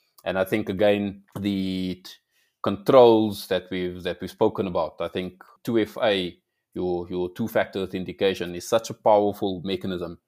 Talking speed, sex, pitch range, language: 145 wpm, male, 90-105 Hz, English